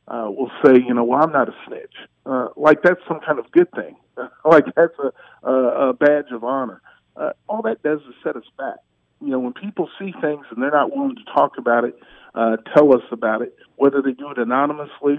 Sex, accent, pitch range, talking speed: male, American, 125-165 Hz, 230 wpm